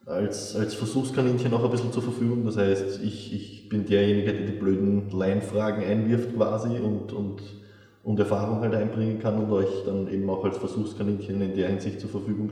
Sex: male